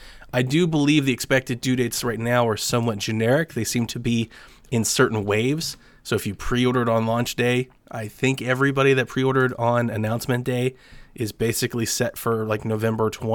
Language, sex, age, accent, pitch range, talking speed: English, male, 20-39, American, 110-135 Hz, 180 wpm